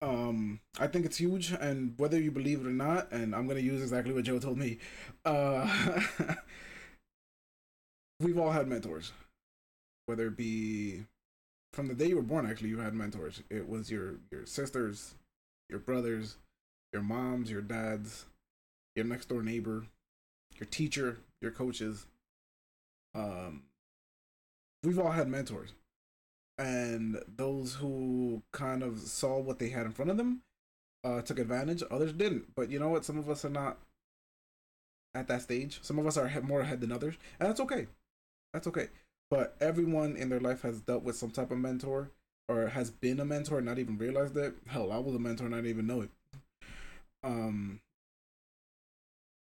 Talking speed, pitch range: 165 wpm, 110-140 Hz